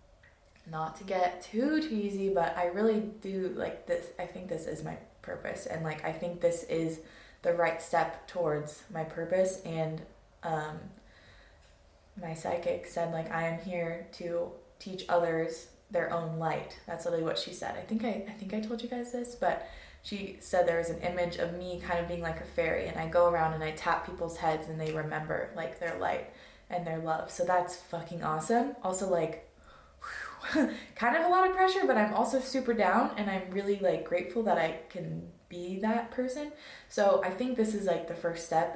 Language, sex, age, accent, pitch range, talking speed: English, female, 20-39, American, 165-200 Hz, 200 wpm